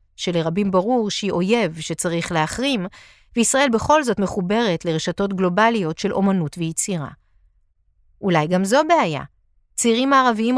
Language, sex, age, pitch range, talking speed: Hebrew, female, 40-59, 180-245 Hz, 120 wpm